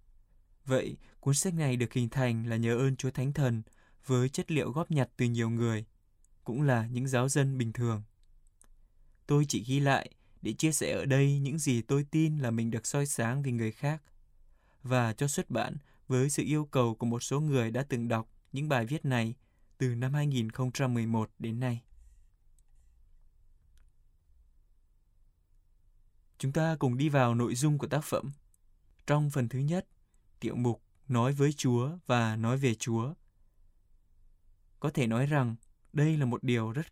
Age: 20-39